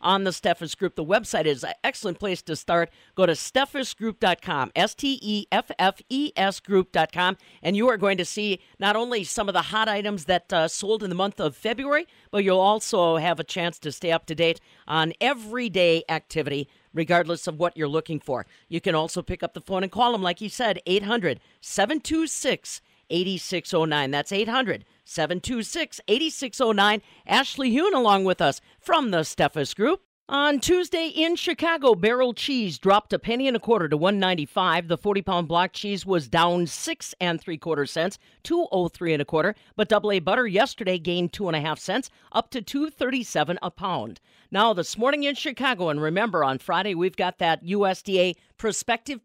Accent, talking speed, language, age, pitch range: American, 185 wpm, English, 50-69, 170-230 Hz